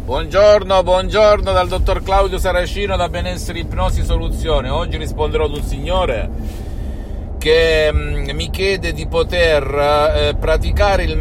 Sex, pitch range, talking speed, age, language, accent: male, 75-105 Hz, 125 wpm, 50-69, Italian, native